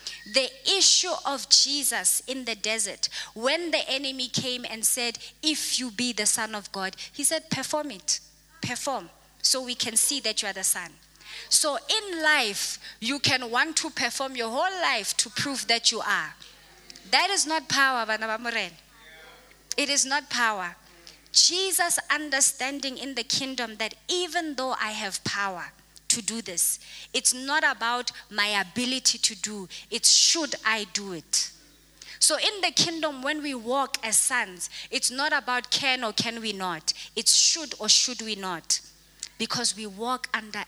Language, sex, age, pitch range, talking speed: English, female, 20-39, 215-275 Hz, 165 wpm